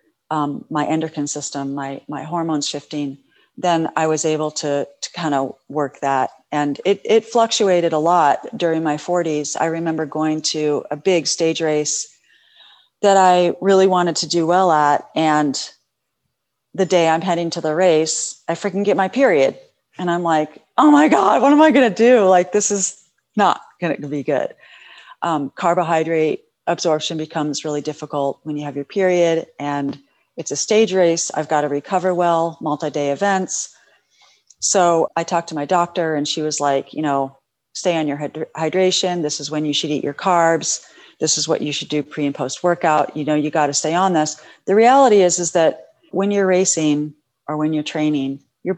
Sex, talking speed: female, 190 wpm